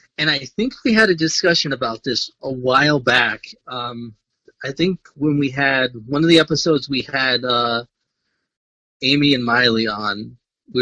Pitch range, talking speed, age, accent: 115-155 Hz, 165 wpm, 30-49, American